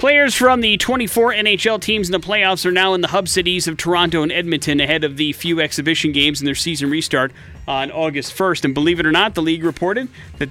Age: 30-49